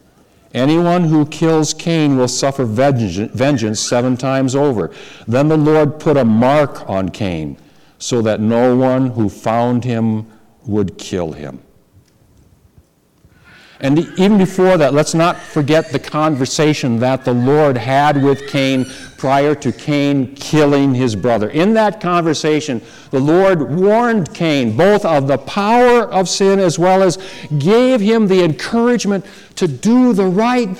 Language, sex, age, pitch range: English, male, 60-79, 110-170 Hz